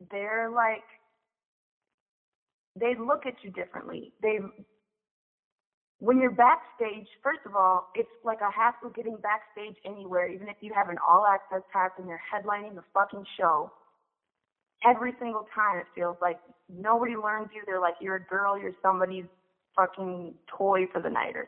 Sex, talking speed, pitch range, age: female, 155 wpm, 185-225 Hz, 20-39